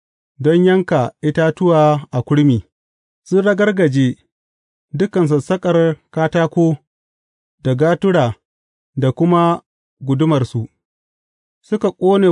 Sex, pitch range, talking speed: male, 130-170 Hz, 85 wpm